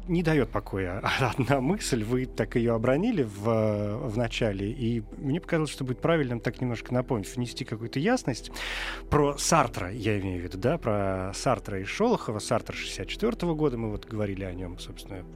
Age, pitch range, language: 30-49, 110-150 Hz, Russian